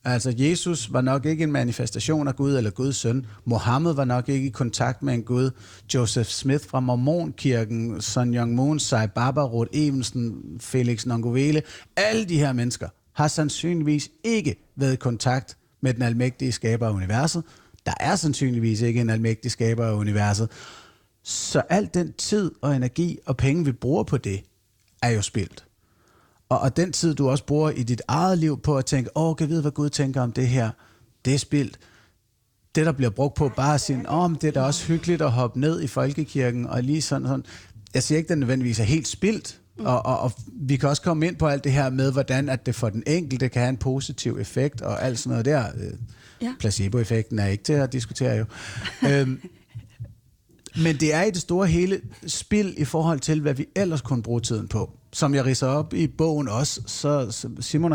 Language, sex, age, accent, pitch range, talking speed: Danish, male, 30-49, native, 115-150 Hz, 205 wpm